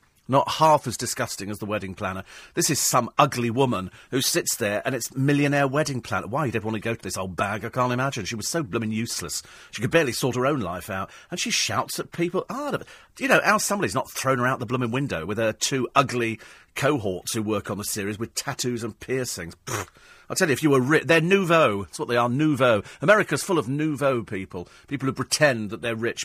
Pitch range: 105-155 Hz